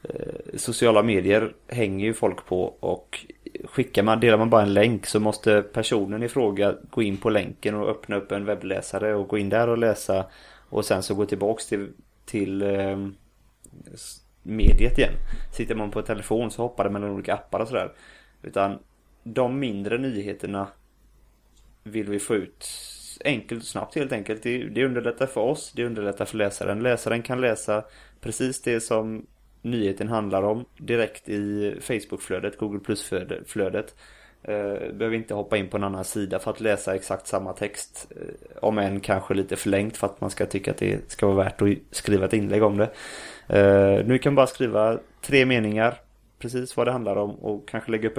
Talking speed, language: 175 wpm, English